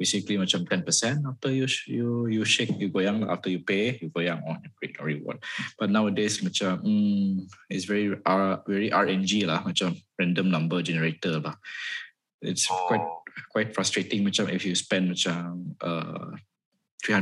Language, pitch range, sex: Malay, 95-120 Hz, male